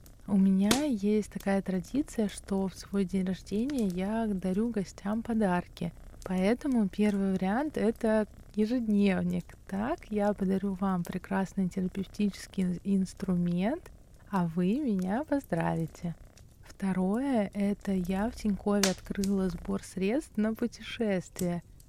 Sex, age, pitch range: female, 20-39, 185-210 Hz